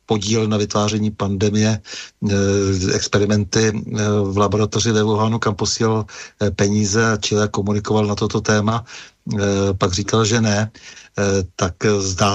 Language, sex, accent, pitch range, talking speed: Czech, male, native, 105-110 Hz, 115 wpm